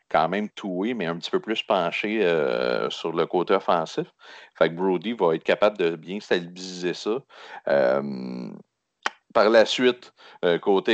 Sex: male